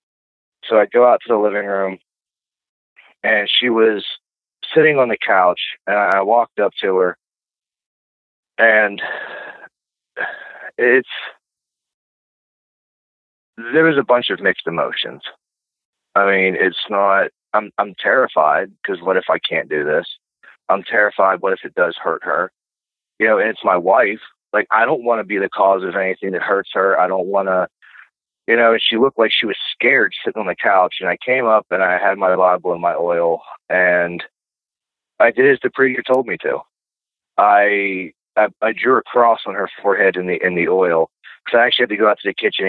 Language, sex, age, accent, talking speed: English, male, 30-49, American, 185 wpm